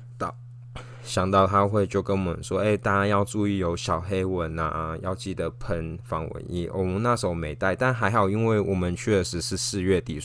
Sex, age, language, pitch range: male, 20-39, Chinese, 90-120 Hz